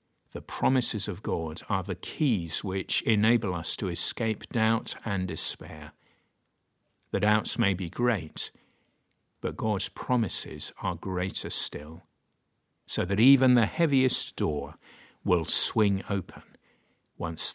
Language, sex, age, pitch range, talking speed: English, male, 50-69, 85-110 Hz, 125 wpm